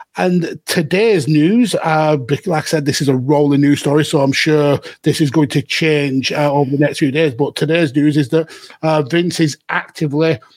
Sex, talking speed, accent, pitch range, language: male, 205 wpm, British, 145-170 Hz, English